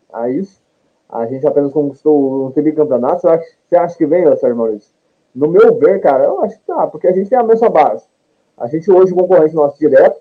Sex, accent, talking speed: male, Brazilian, 235 wpm